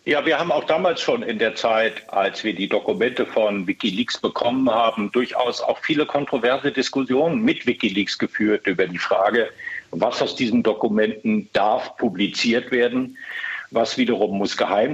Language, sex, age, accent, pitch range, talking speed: German, male, 50-69, German, 105-145 Hz, 155 wpm